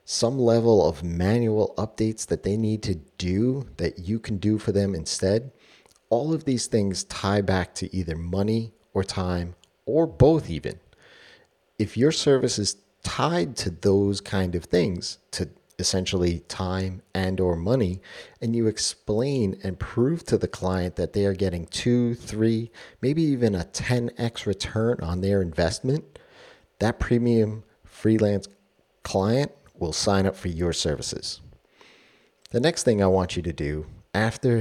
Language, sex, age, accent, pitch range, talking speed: English, male, 40-59, American, 90-115 Hz, 155 wpm